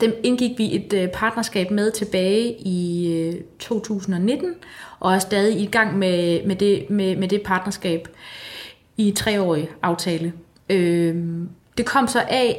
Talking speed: 120 wpm